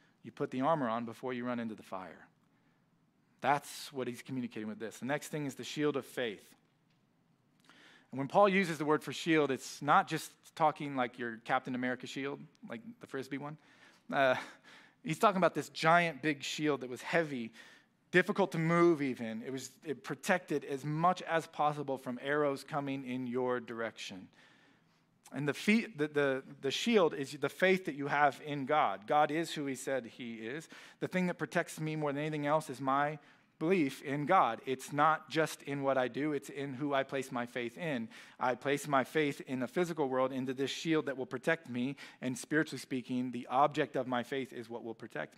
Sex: male